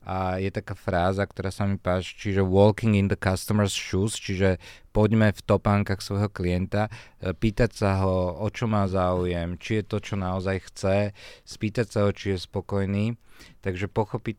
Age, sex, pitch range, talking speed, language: 40-59, male, 95-105 Hz, 170 wpm, Slovak